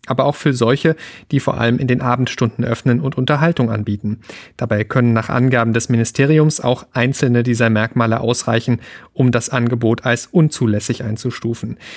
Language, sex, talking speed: German, male, 155 wpm